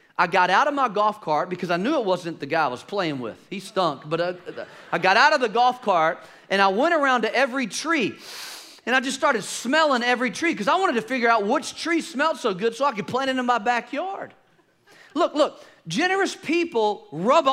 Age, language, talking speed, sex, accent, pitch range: 40-59, English, 230 wpm, male, American, 200-295 Hz